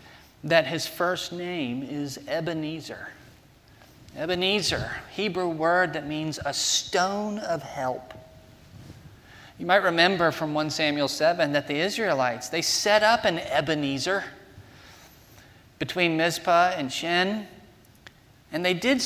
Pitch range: 150-220 Hz